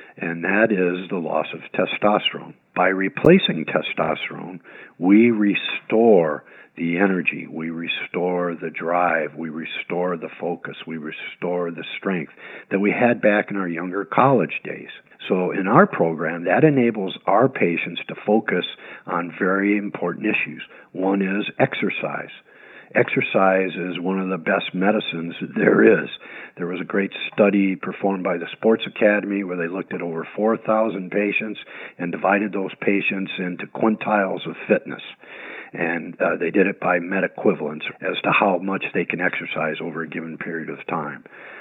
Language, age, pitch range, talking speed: English, 50-69, 90-105 Hz, 155 wpm